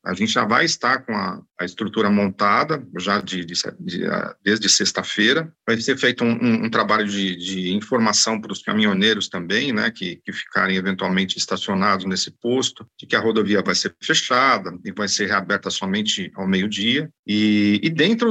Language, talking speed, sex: Portuguese, 180 wpm, male